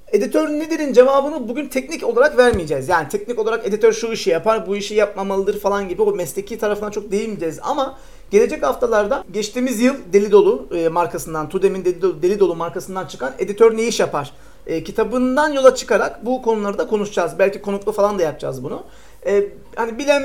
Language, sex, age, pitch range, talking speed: Turkish, male, 40-59, 185-245 Hz, 170 wpm